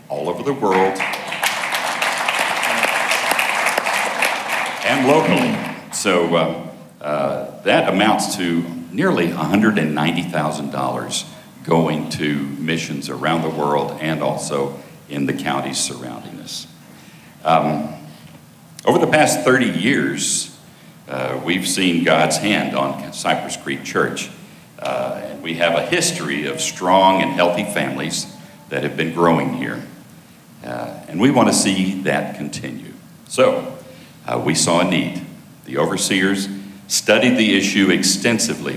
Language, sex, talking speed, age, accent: English, male, 120 wpm, 60-79, American